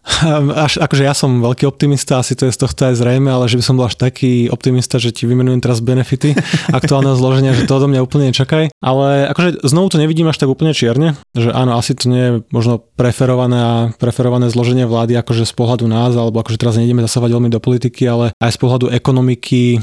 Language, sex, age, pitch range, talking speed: Slovak, male, 20-39, 120-130 Hz, 220 wpm